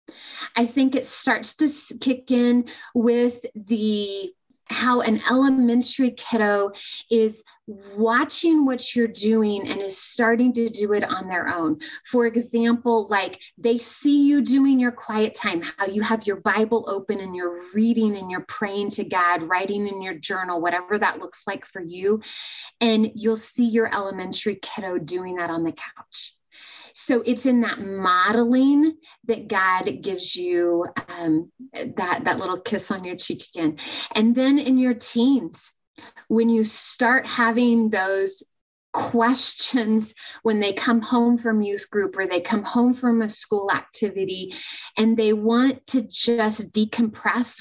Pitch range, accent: 200-250 Hz, American